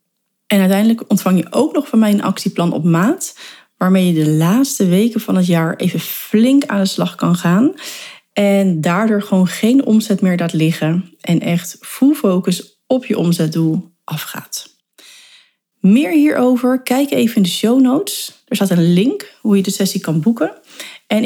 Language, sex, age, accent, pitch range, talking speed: Dutch, female, 40-59, Dutch, 175-240 Hz, 175 wpm